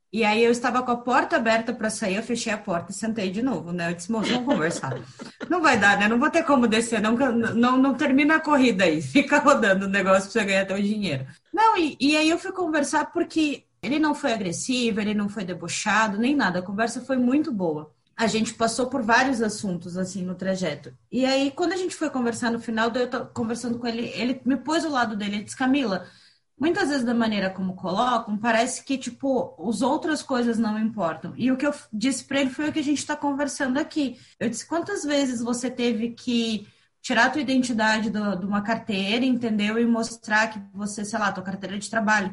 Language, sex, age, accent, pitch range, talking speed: Portuguese, female, 20-39, Brazilian, 200-265 Hz, 225 wpm